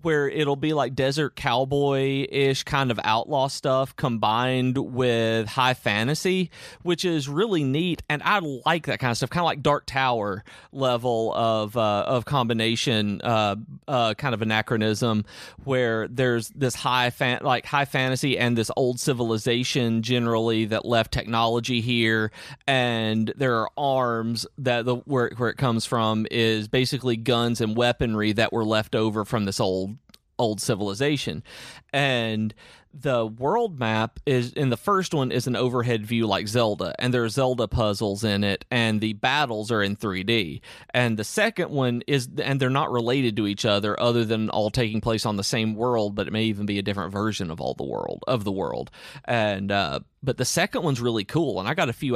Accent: American